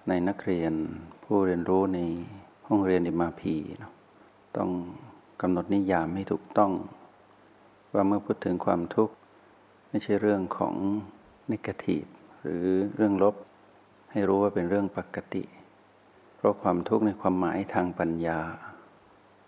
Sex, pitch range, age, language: male, 90-105 Hz, 60-79, Thai